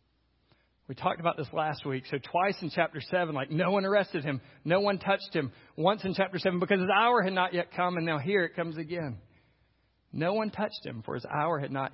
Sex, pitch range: male, 155-240 Hz